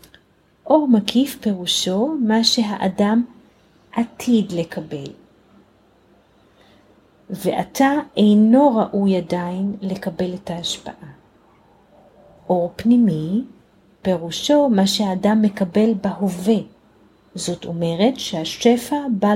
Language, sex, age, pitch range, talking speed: Hebrew, female, 30-49, 180-225 Hz, 80 wpm